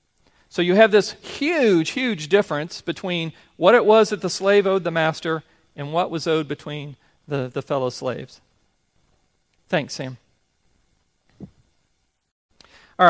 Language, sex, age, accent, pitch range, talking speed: English, male, 40-59, American, 140-175 Hz, 135 wpm